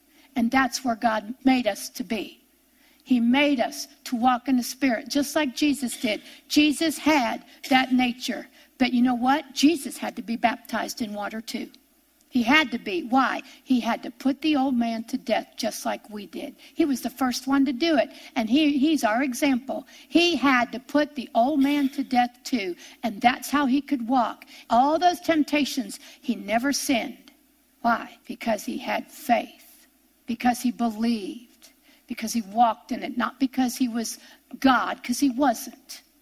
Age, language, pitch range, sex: 60-79, English, 245-300 Hz, female